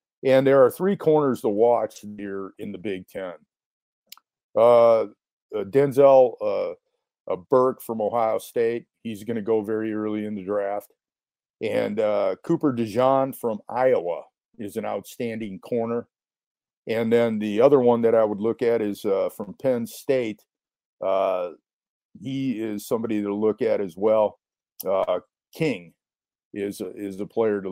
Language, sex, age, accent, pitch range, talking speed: English, male, 50-69, American, 100-135 Hz, 155 wpm